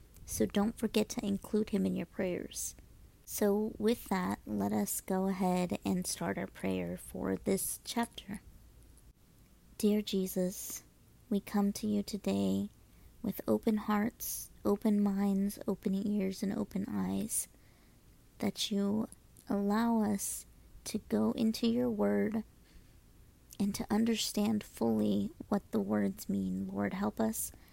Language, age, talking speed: English, 30-49, 130 wpm